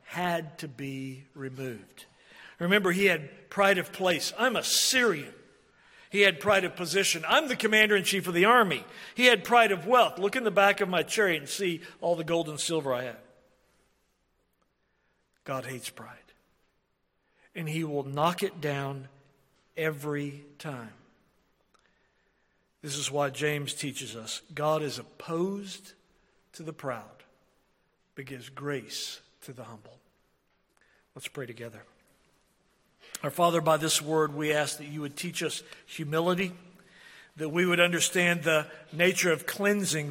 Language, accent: English, American